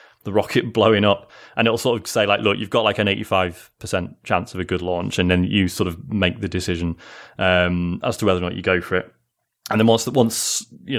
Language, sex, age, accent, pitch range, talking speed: English, male, 20-39, British, 95-125 Hz, 240 wpm